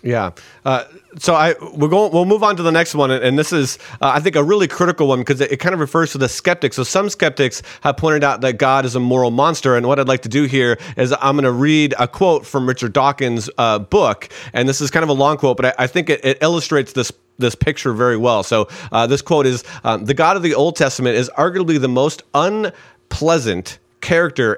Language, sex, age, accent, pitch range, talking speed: English, male, 40-59, American, 125-165 Hz, 245 wpm